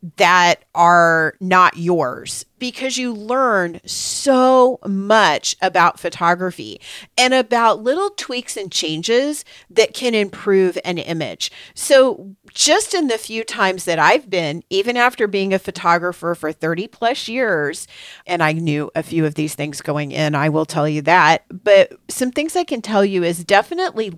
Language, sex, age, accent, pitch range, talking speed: English, female, 40-59, American, 165-215 Hz, 160 wpm